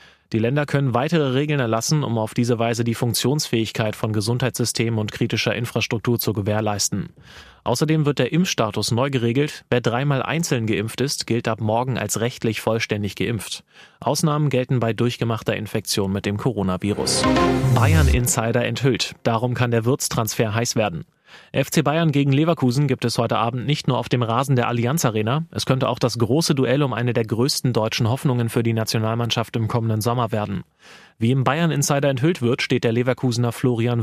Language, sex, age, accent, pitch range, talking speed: German, male, 30-49, German, 115-135 Hz, 175 wpm